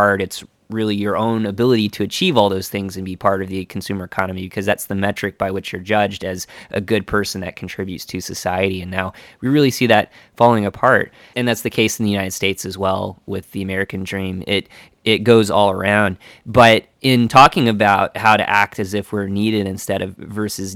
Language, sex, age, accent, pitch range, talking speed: English, male, 20-39, American, 95-110 Hz, 215 wpm